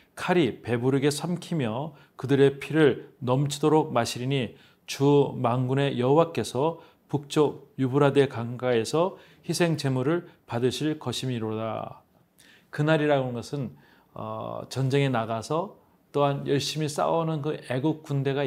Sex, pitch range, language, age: male, 125-155 Hz, Korean, 40-59